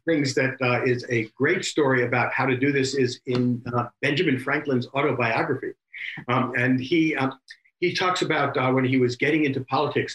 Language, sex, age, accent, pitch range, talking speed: English, male, 60-79, American, 125-160 Hz, 190 wpm